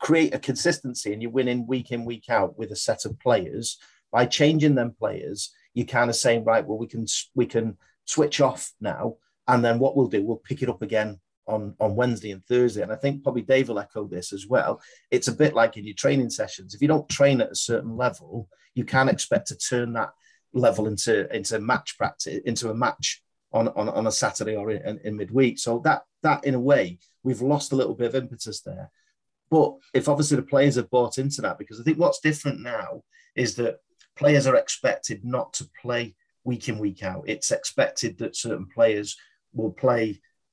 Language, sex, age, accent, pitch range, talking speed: English, male, 40-59, British, 110-145 Hz, 215 wpm